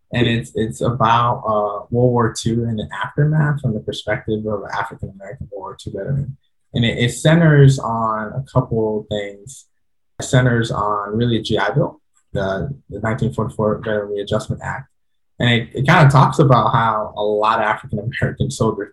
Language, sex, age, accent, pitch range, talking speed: English, male, 20-39, American, 105-130 Hz, 175 wpm